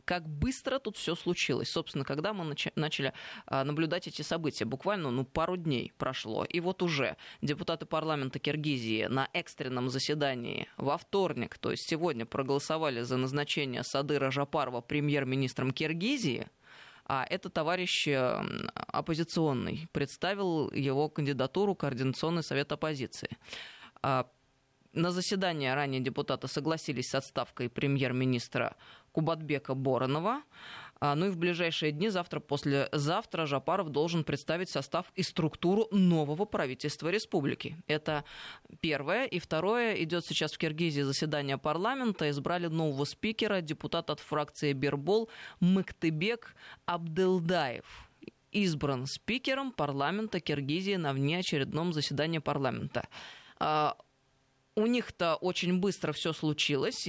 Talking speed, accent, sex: 110 wpm, native, female